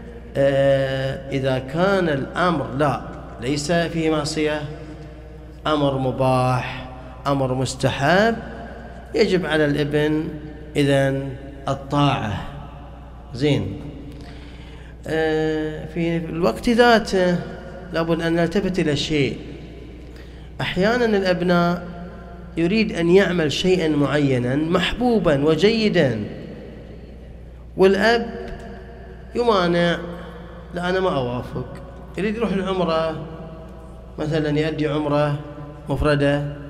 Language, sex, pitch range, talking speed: Arabic, male, 140-175 Hz, 80 wpm